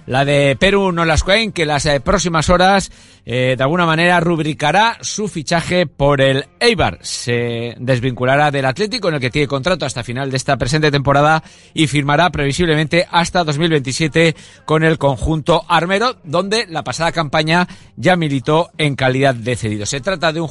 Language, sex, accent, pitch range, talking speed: Spanish, male, Spanish, 125-165 Hz, 170 wpm